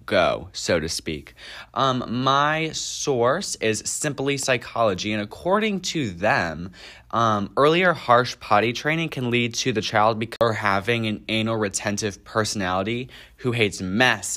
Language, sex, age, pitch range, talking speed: English, male, 20-39, 95-120 Hz, 135 wpm